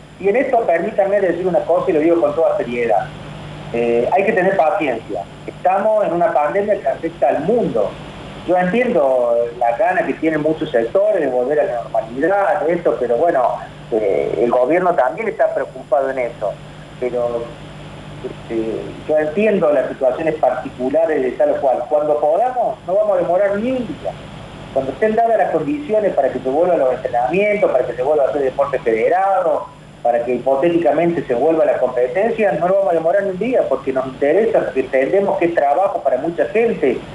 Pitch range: 145-205 Hz